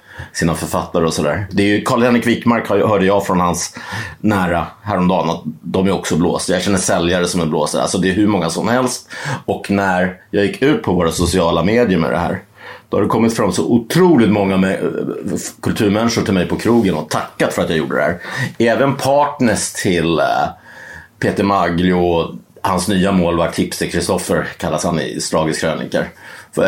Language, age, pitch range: Swedish, 30-49, 85-115 Hz